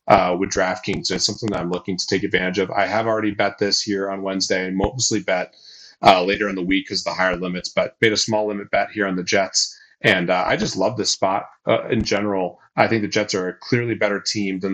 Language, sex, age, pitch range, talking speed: English, male, 30-49, 95-110 Hz, 255 wpm